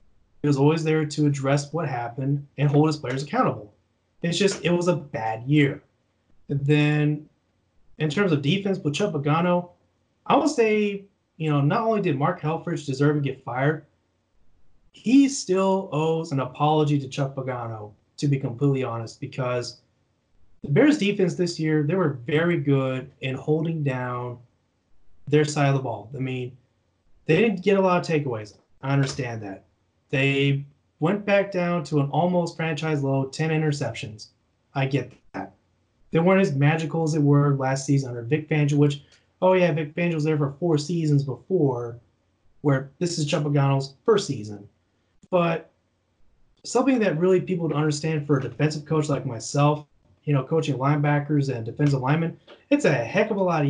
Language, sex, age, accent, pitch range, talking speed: English, male, 20-39, American, 125-160 Hz, 170 wpm